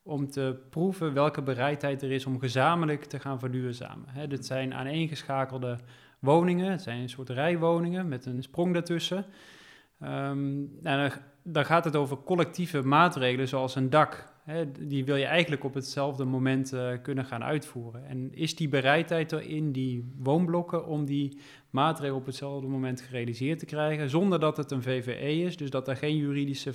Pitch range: 130-155 Hz